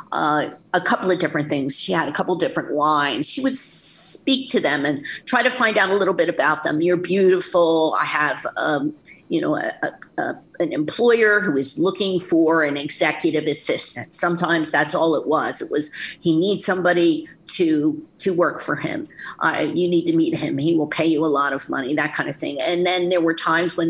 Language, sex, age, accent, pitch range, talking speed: English, female, 50-69, American, 155-210 Hz, 215 wpm